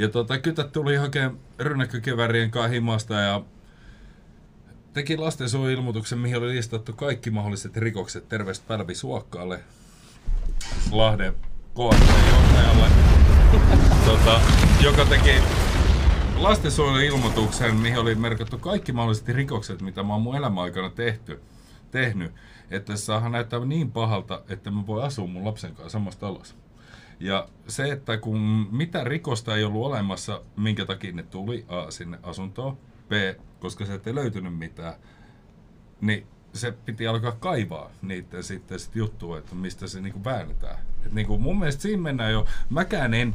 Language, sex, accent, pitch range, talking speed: Finnish, male, native, 95-120 Hz, 135 wpm